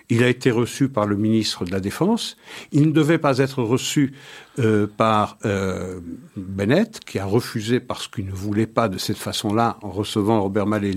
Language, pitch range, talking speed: French, 105-140 Hz, 190 wpm